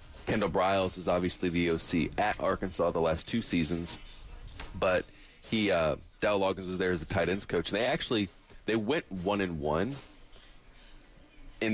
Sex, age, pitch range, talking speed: male, 30-49, 85-105 Hz, 165 wpm